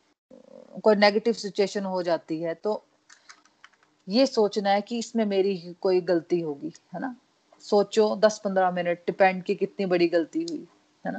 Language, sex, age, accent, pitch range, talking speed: Hindi, female, 30-49, native, 180-220 Hz, 150 wpm